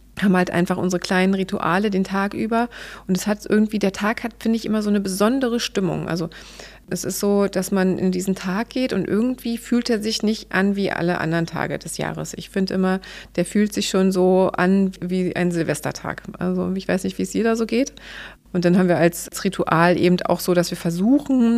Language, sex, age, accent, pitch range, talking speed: German, female, 30-49, German, 175-210 Hz, 220 wpm